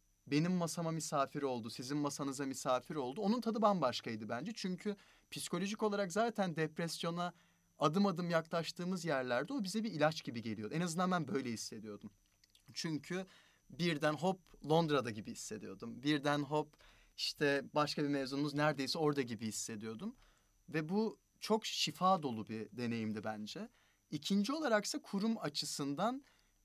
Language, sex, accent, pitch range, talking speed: Turkish, male, native, 120-180 Hz, 135 wpm